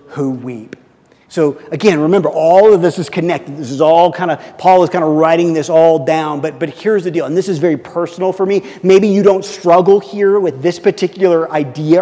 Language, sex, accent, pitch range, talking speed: English, male, American, 170-260 Hz, 220 wpm